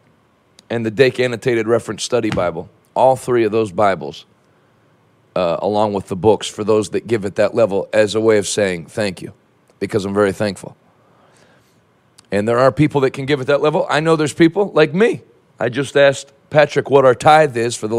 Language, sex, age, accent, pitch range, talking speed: English, male, 40-59, American, 130-155 Hz, 205 wpm